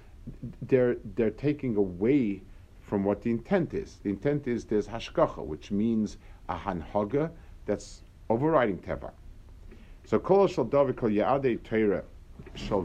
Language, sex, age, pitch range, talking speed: English, male, 50-69, 90-125 Hz, 130 wpm